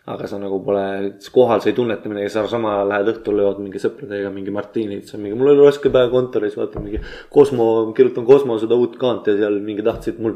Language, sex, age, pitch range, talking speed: English, male, 20-39, 105-120 Hz, 215 wpm